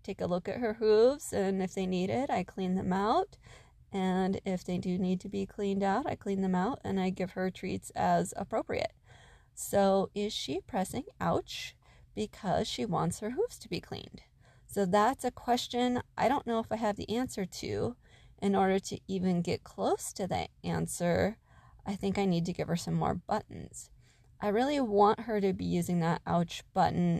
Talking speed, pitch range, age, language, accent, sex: 200 wpm, 175-210 Hz, 20-39, English, American, female